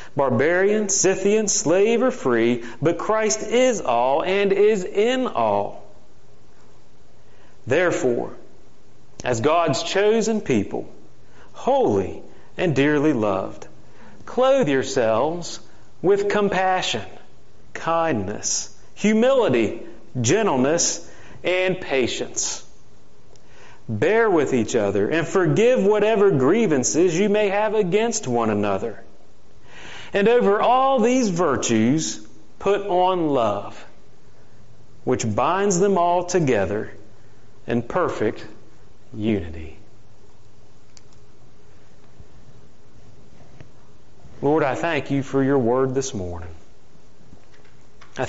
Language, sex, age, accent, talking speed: English, male, 40-59, American, 90 wpm